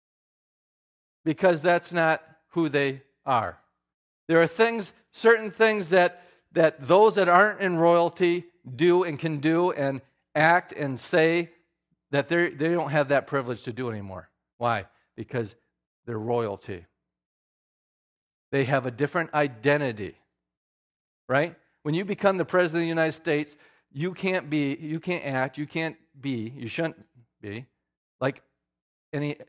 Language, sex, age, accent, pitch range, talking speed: English, male, 40-59, American, 120-175 Hz, 140 wpm